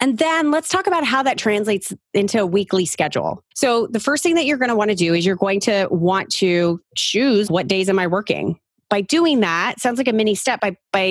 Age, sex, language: 30-49, female, English